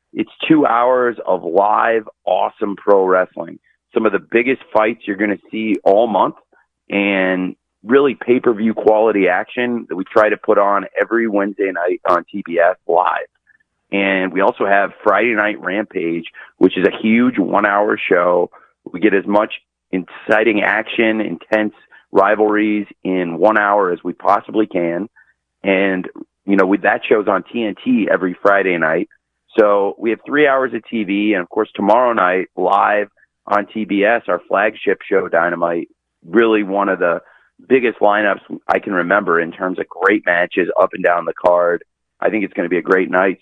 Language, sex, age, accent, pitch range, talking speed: English, male, 30-49, American, 95-110 Hz, 170 wpm